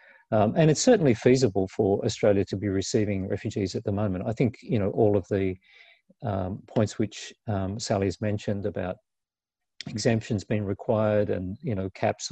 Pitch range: 95-115 Hz